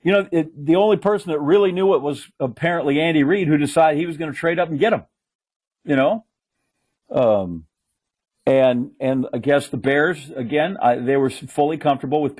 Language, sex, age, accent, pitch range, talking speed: English, male, 50-69, American, 120-150 Hz, 190 wpm